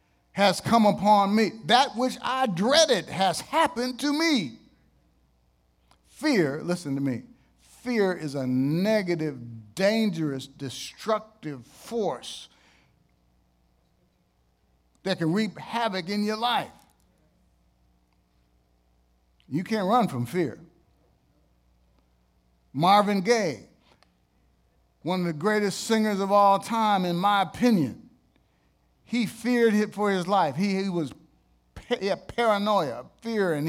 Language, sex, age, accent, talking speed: English, male, 50-69, American, 110 wpm